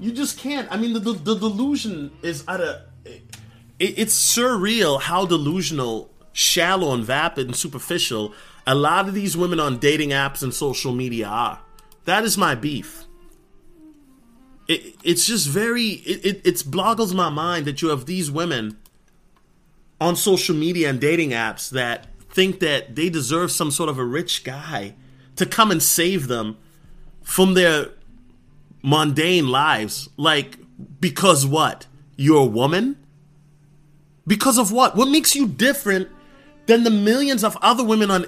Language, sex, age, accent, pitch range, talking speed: English, male, 30-49, American, 145-210 Hz, 155 wpm